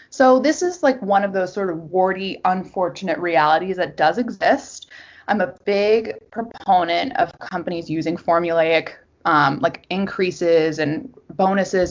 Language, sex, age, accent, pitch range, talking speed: English, female, 20-39, American, 170-230 Hz, 140 wpm